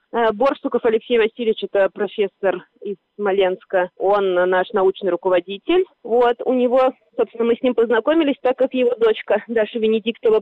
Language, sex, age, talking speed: Russian, female, 20-39, 150 wpm